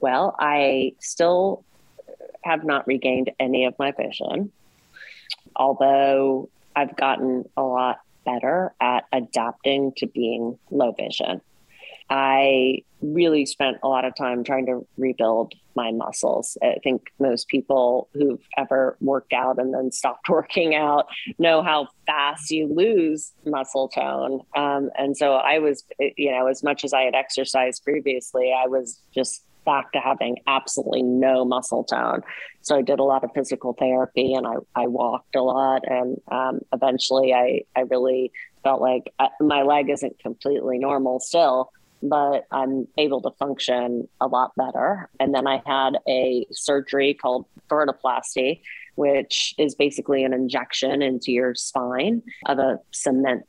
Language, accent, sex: English, American, female